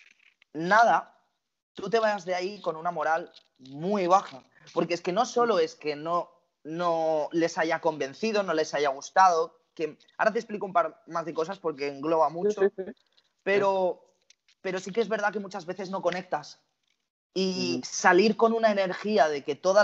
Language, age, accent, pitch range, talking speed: Spanish, 20-39, Spanish, 160-200 Hz, 175 wpm